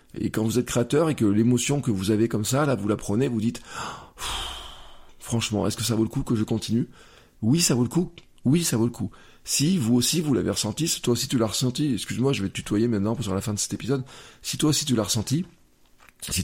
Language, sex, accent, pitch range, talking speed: French, male, French, 115-135 Hz, 260 wpm